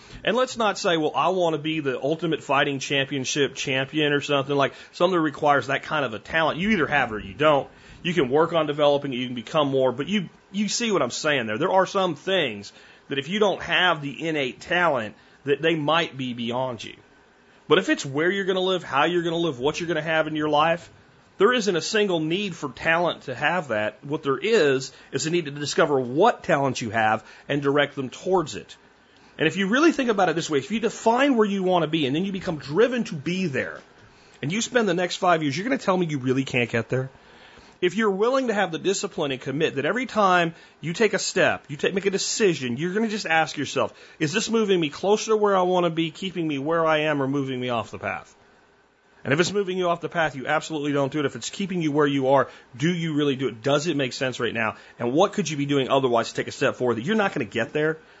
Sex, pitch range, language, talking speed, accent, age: male, 140-185 Hz, English, 265 wpm, American, 40-59